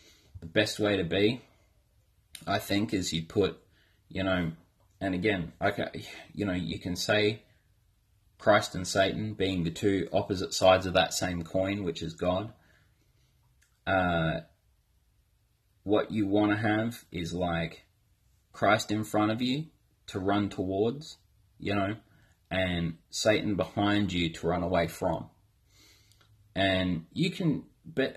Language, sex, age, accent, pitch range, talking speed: English, male, 30-49, Australian, 90-110 Hz, 140 wpm